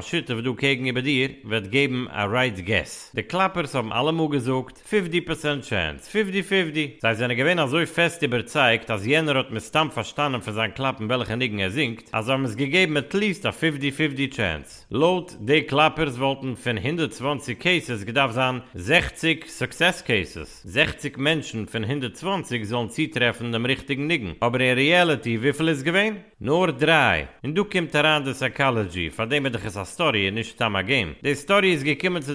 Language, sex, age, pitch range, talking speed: English, male, 50-69, 120-155 Hz, 145 wpm